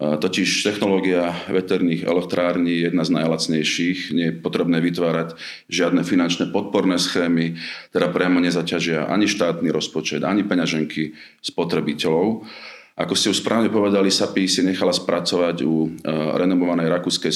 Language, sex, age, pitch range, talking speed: Slovak, male, 40-59, 80-95 Hz, 130 wpm